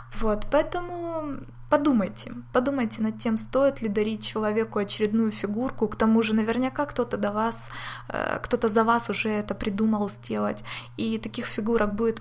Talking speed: 145 wpm